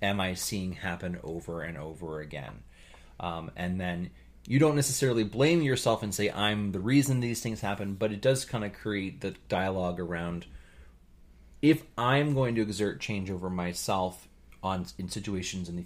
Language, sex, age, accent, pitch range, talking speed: English, male, 30-49, American, 90-110 Hz, 175 wpm